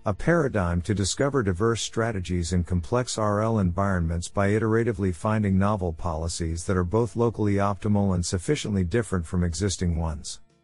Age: 50-69